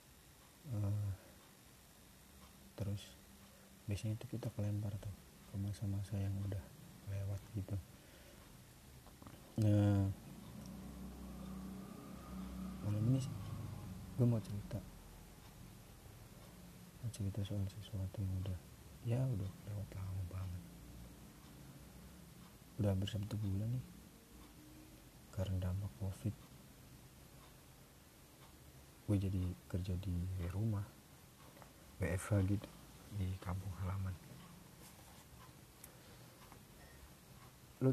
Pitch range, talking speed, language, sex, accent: 90-105 Hz, 80 wpm, Indonesian, male, native